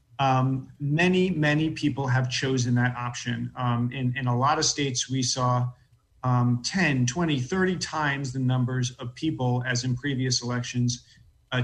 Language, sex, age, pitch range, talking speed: English, male, 40-59, 125-145 Hz, 160 wpm